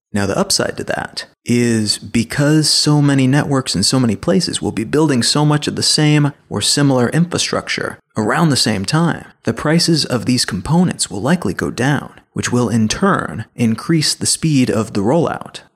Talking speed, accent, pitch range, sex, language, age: 185 wpm, American, 115-145 Hz, male, English, 30-49